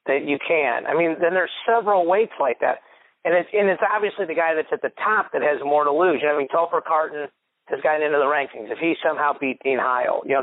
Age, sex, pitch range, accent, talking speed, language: 40-59, male, 135-165 Hz, American, 265 wpm, English